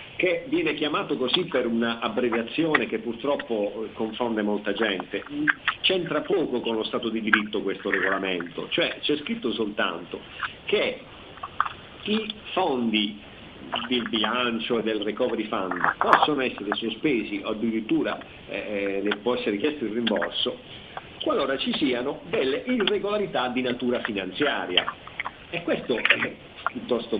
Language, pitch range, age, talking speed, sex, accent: Italian, 110-140 Hz, 50-69, 125 wpm, male, native